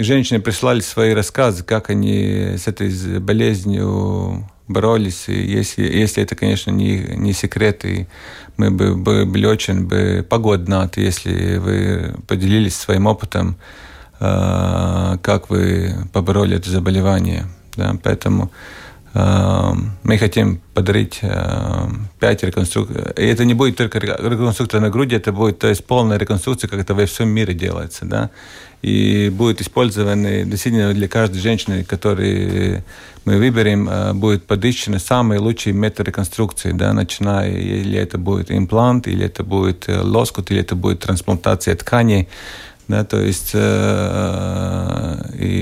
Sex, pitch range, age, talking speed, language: male, 95-110 Hz, 40-59, 135 wpm, Russian